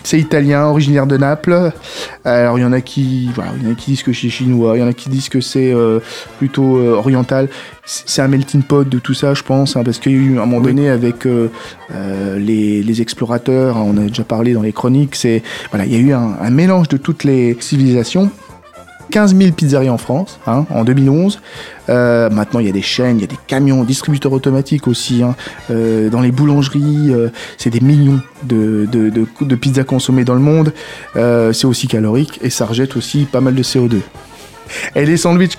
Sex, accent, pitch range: male, French, 120-140 Hz